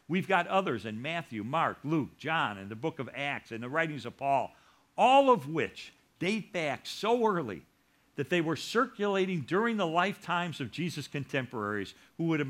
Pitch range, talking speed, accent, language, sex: 120-170 Hz, 180 wpm, American, English, male